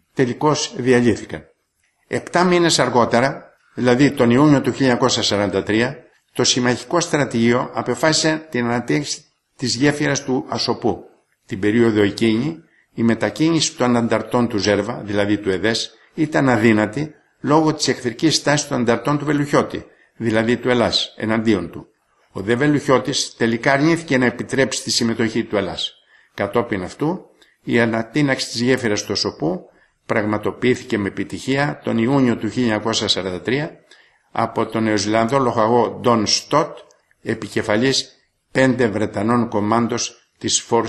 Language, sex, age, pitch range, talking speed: English, male, 60-79, 110-130 Hz, 125 wpm